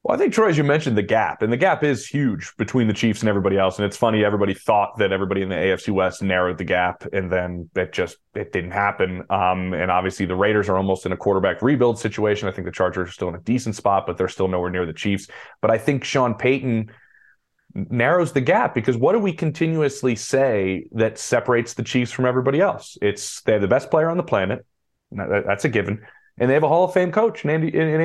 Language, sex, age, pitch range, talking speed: English, male, 20-39, 100-135 Hz, 240 wpm